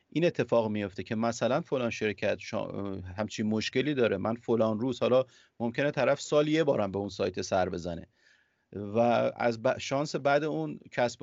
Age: 30-49